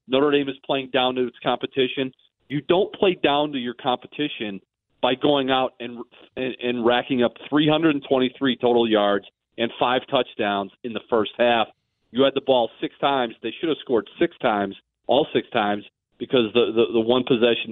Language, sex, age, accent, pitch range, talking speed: English, male, 40-59, American, 115-140 Hz, 185 wpm